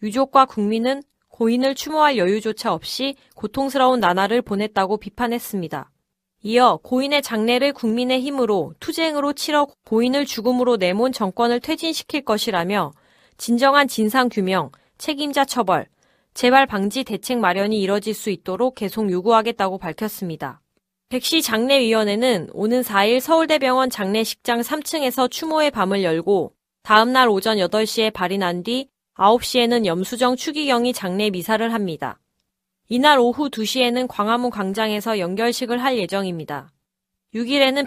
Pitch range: 200-255 Hz